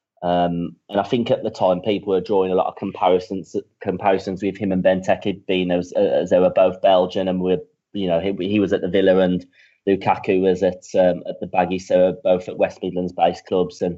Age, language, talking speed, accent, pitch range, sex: 30-49, English, 225 wpm, British, 90-100 Hz, male